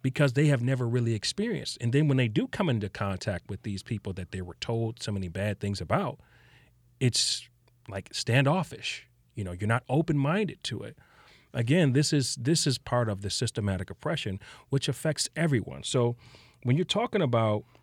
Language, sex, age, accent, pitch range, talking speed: English, male, 40-59, American, 105-140 Hz, 180 wpm